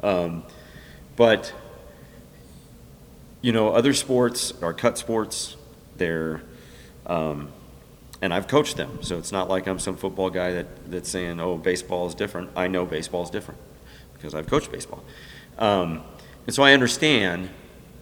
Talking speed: 145 wpm